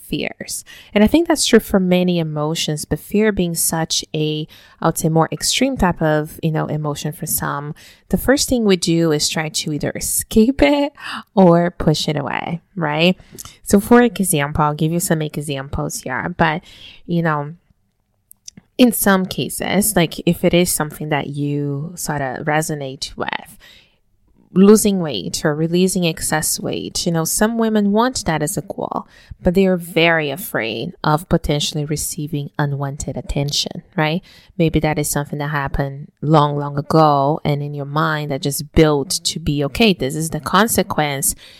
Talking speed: 170 wpm